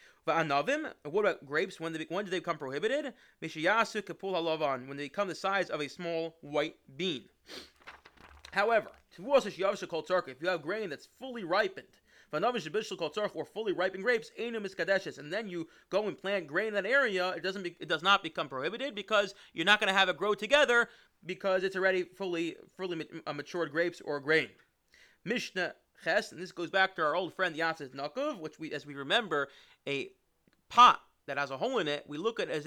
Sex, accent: male, American